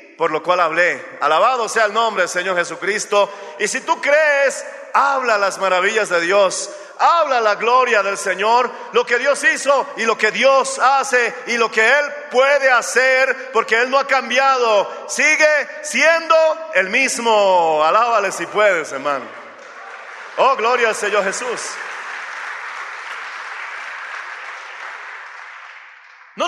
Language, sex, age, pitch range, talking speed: Spanish, male, 50-69, 200-275 Hz, 135 wpm